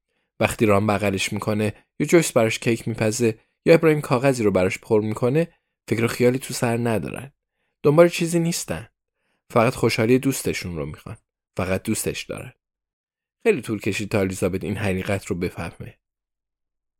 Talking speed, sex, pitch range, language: 145 wpm, male, 95-120 Hz, Persian